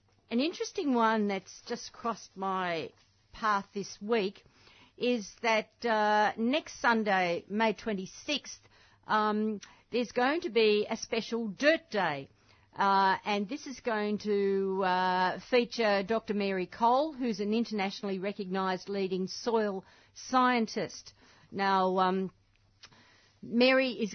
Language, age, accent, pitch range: English, 50-69, Australian, 190-235 Hz